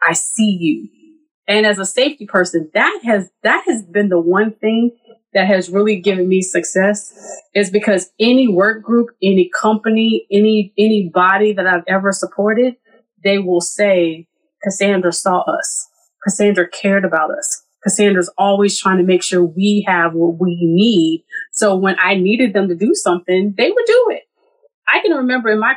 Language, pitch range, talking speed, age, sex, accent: English, 185-255 Hz, 170 wpm, 30-49, female, American